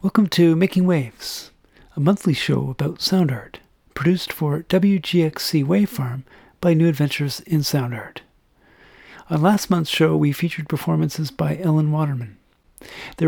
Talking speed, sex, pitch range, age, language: 145 wpm, male, 130-165 Hz, 40-59, English